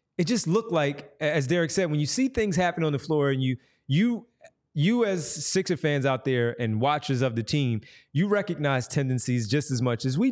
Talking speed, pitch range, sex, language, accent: 215 wpm, 125-160 Hz, male, English, American